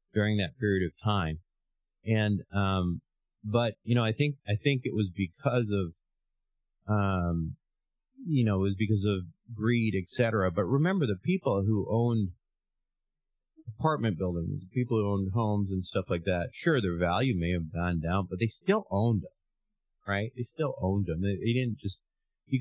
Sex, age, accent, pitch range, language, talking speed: male, 30-49, American, 90-120 Hz, English, 175 wpm